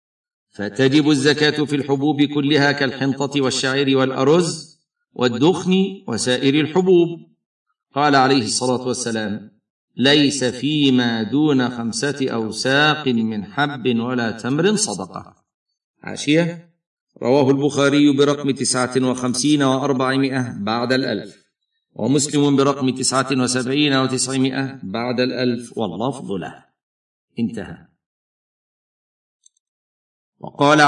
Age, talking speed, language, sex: 50-69, 90 wpm, Arabic, male